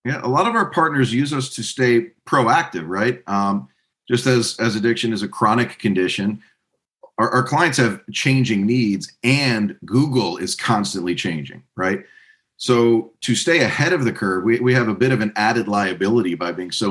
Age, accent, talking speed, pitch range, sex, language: 40-59, American, 185 wpm, 90-120 Hz, male, English